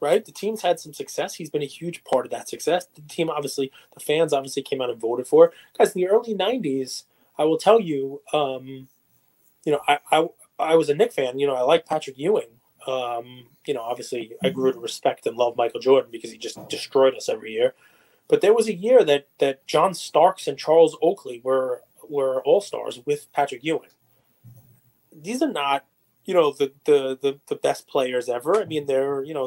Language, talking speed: English, 215 wpm